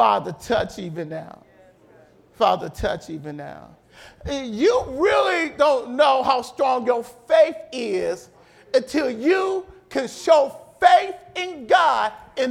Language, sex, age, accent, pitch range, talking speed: English, male, 50-69, American, 265-365 Hz, 120 wpm